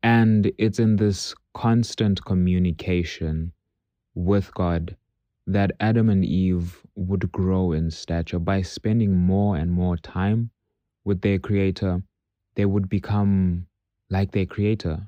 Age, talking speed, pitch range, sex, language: 20-39, 125 wpm, 90-105 Hz, male, English